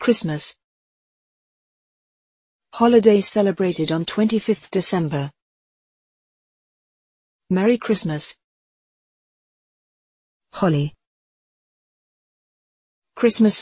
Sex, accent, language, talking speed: female, British, English, 45 wpm